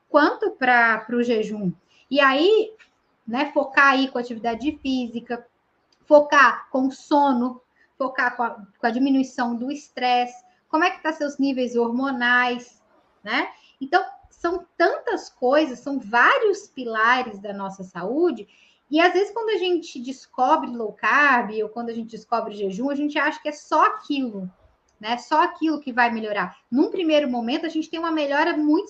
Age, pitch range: 10-29, 240-315 Hz